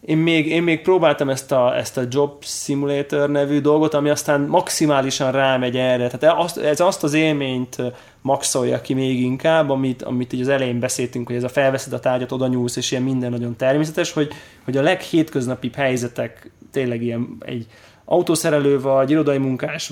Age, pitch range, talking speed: 20-39, 125-150 Hz, 175 wpm